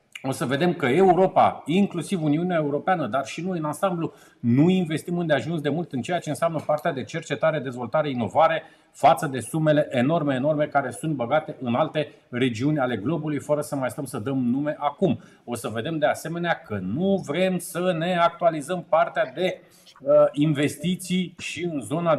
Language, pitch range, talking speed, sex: Romanian, 145-175 Hz, 180 wpm, male